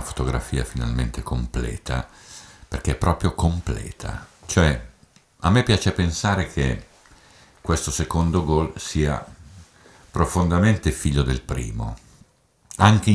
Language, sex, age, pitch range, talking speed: Italian, male, 50-69, 70-95 Hz, 100 wpm